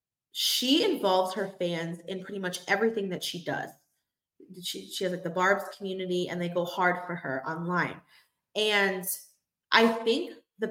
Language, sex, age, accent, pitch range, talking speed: English, female, 20-39, American, 175-225 Hz, 165 wpm